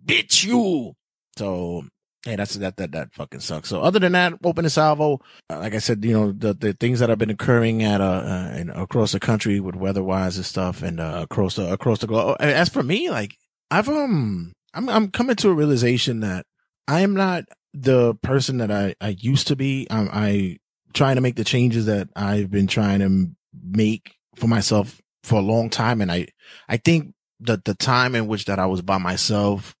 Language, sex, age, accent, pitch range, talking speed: English, male, 20-39, American, 95-135 Hz, 220 wpm